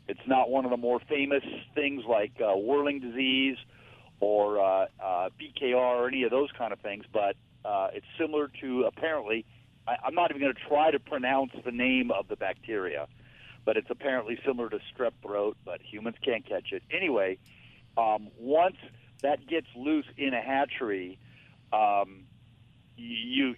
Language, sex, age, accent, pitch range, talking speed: English, male, 50-69, American, 115-135 Hz, 170 wpm